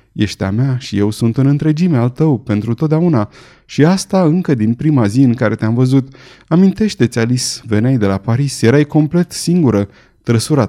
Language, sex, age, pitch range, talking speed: Romanian, male, 30-49, 105-135 Hz, 180 wpm